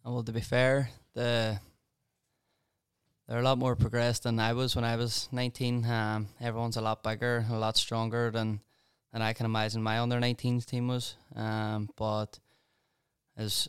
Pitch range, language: 105-115 Hz, English